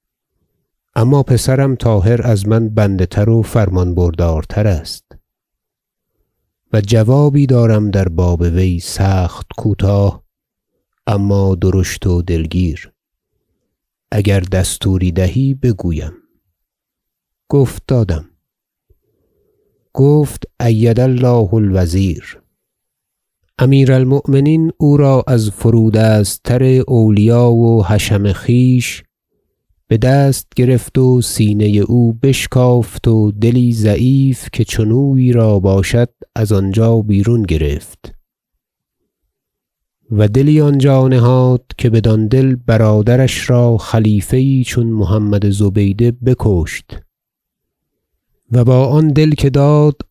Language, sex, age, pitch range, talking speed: Persian, male, 50-69, 100-130 Hz, 95 wpm